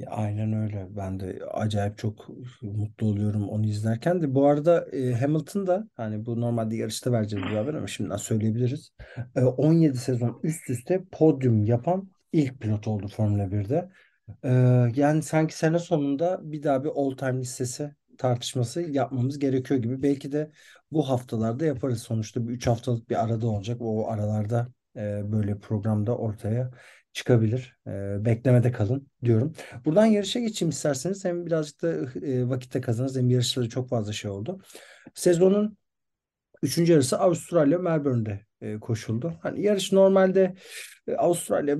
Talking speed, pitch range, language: 135 wpm, 110-145 Hz, Turkish